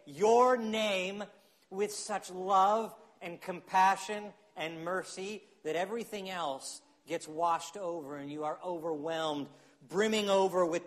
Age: 40-59